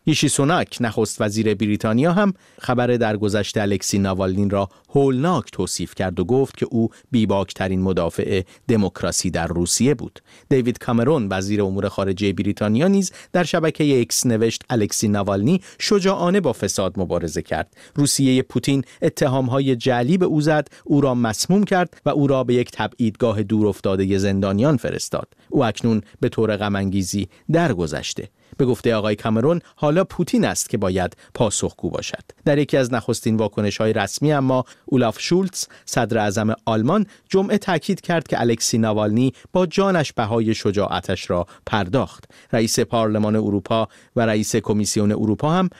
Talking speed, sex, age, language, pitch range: 145 wpm, male, 40-59, Persian, 100-135 Hz